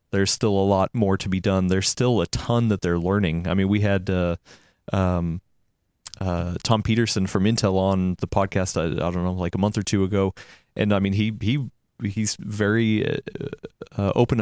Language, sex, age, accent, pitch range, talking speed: English, male, 20-39, American, 95-115 Hz, 200 wpm